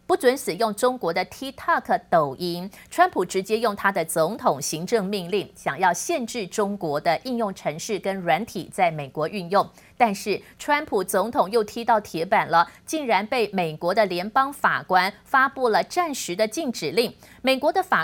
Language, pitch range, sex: Chinese, 185-270 Hz, female